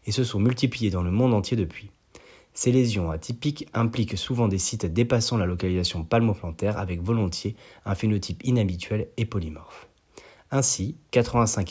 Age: 30-49